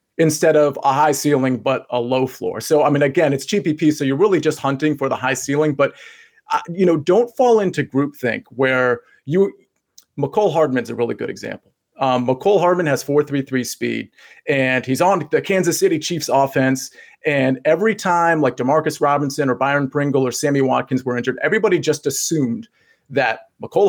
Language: English